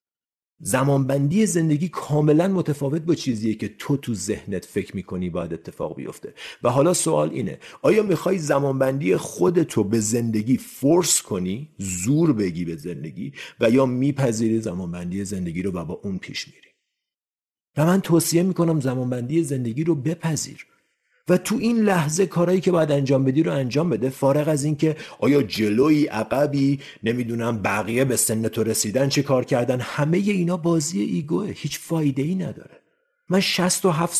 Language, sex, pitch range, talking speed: Persian, male, 115-165 Hz, 155 wpm